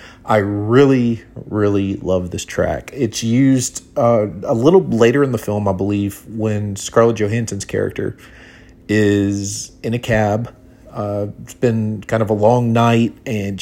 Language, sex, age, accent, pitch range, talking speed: English, male, 30-49, American, 100-125 Hz, 150 wpm